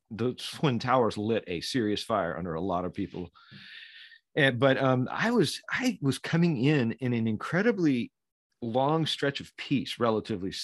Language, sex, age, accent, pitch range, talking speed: English, male, 40-59, American, 105-140 Hz, 165 wpm